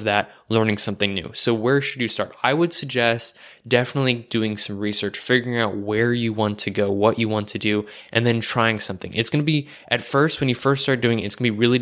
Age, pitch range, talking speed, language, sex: 20-39, 105-125 Hz, 250 wpm, English, male